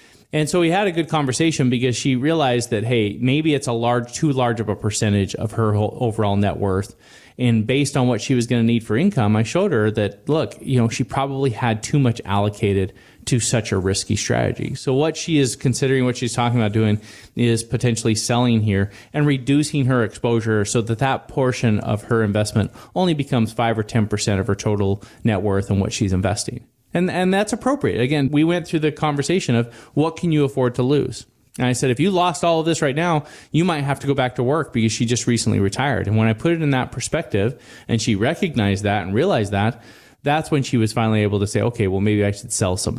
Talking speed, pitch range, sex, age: 230 wpm, 105-140 Hz, male, 30-49